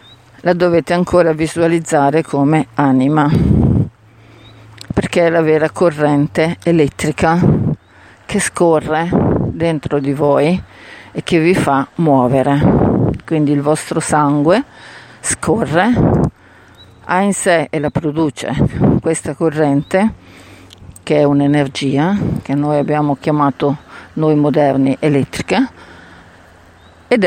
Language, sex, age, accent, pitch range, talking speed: Italian, female, 50-69, native, 140-170 Hz, 100 wpm